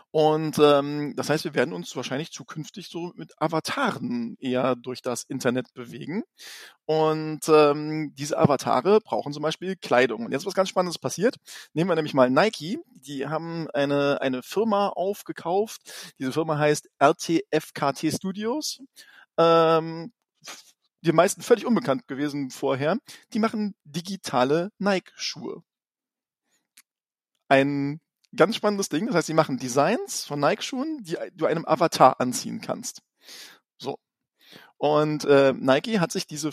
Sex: male